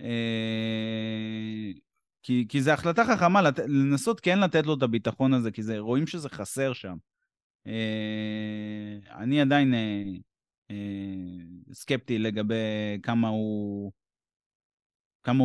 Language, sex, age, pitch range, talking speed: Hebrew, male, 30-49, 105-140 Hz, 110 wpm